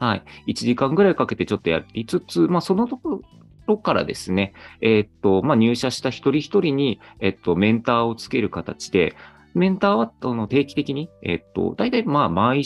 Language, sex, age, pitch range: Japanese, male, 40-59, 100-160 Hz